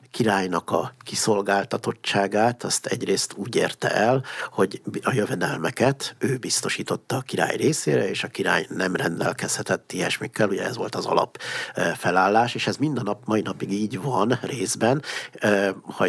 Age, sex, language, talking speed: 60-79, male, Hungarian, 140 wpm